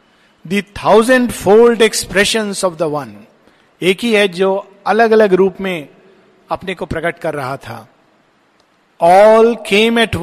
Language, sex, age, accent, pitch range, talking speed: Hindi, male, 50-69, native, 170-215 Hz, 135 wpm